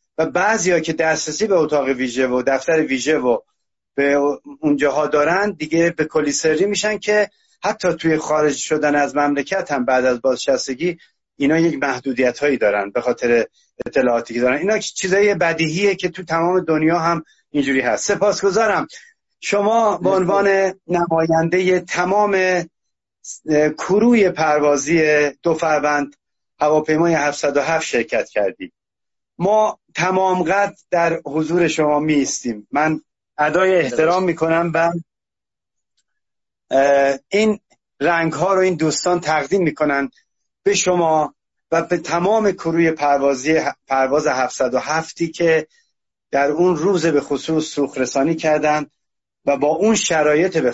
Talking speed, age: 120 wpm, 30-49